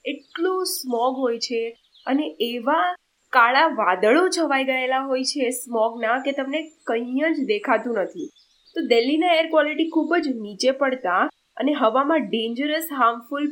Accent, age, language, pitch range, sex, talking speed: native, 10-29, Gujarati, 235-305 Hz, female, 125 wpm